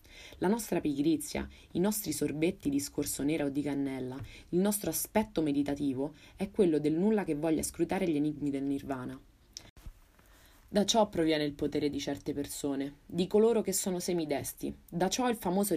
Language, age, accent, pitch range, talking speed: Italian, 20-39, native, 140-180 Hz, 165 wpm